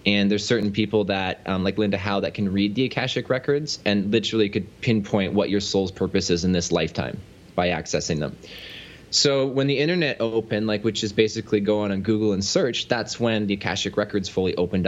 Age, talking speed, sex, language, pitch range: 20-39, 210 wpm, male, English, 100-120 Hz